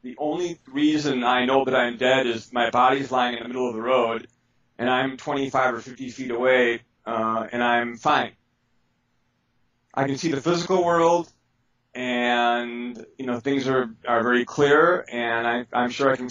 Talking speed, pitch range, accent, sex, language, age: 185 wpm, 115-130 Hz, American, male, English, 30-49